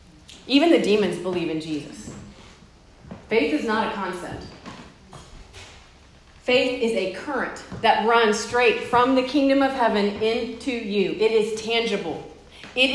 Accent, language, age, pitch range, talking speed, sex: American, English, 30-49, 205-245 Hz, 135 wpm, female